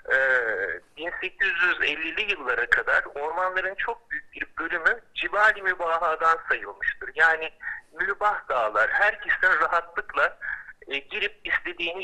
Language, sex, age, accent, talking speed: Turkish, male, 60-79, native, 100 wpm